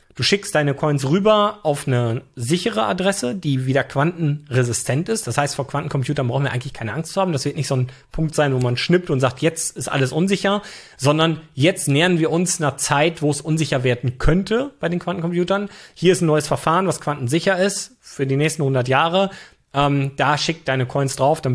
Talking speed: 205 wpm